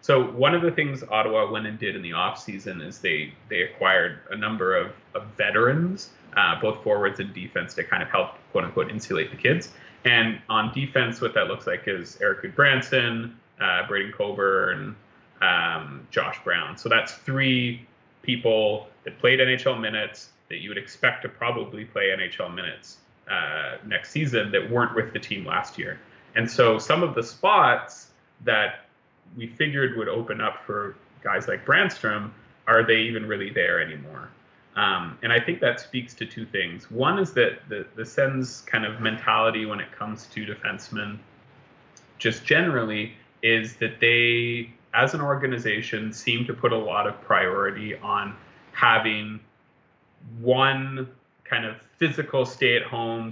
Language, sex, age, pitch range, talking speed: English, male, 30-49, 110-135 Hz, 160 wpm